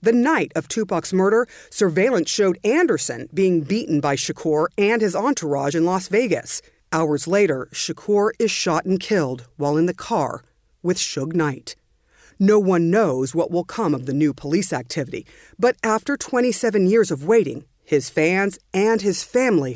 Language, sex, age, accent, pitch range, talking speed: English, female, 50-69, American, 145-210 Hz, 165 wpm